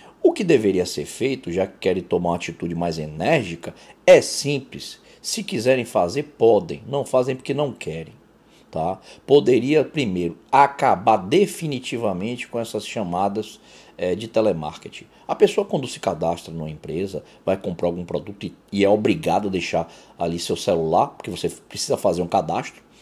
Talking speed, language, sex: 160 wpm, Portuguese, male